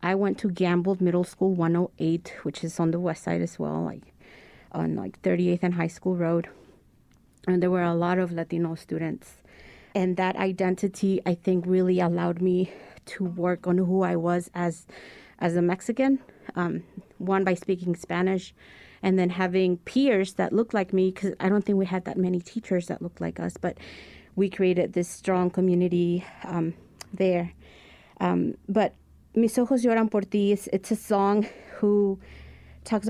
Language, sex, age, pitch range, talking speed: English, female, 30-49, 175-195 Hz, 170 wpm